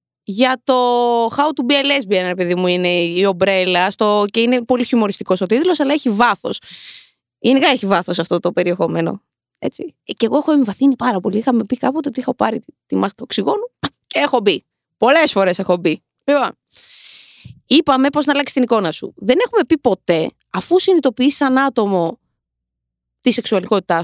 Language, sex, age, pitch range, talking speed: Greek, female, 20-39, 205-300 Hz, 170 wpm